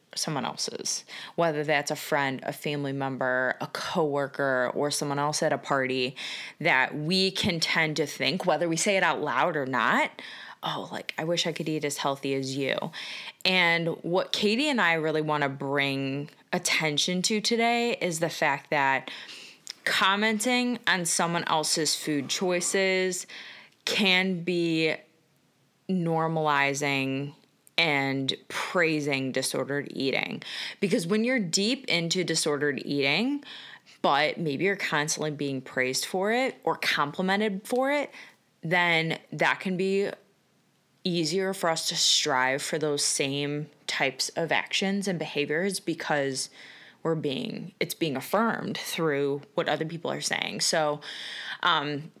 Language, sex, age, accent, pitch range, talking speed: English, female, 20-39, American, 145-185 Hz, 140 wpm